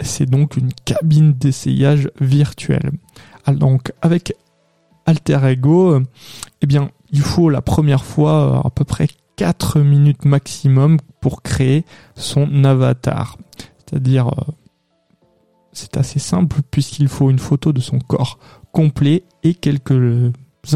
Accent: French